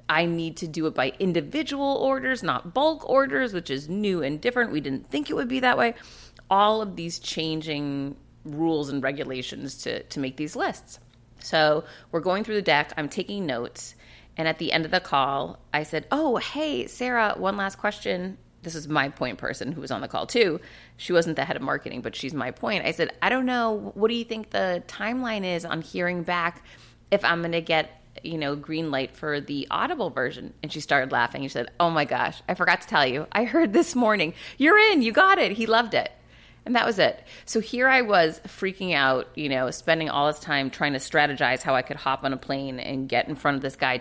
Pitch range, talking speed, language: 140-205 Hz, 230 wpm, English